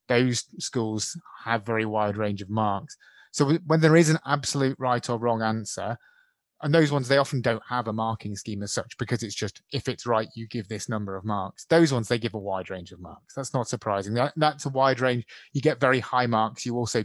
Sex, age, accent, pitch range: male, 30-49, British, 110-135 Hz